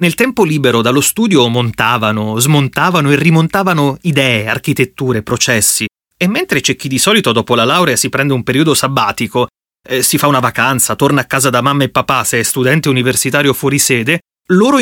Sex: male